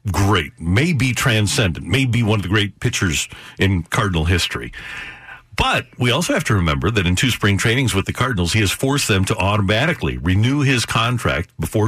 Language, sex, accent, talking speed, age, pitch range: English, male, American, 190 wpm, 50-69, 100-135 Hz